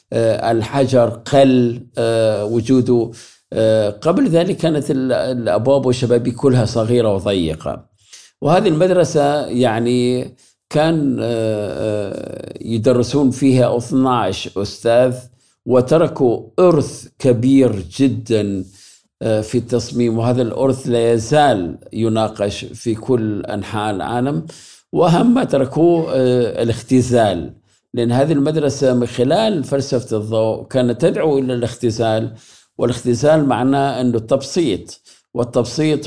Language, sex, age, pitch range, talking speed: Arabic, male, 50-69, 110-135 Hz, 90 wpm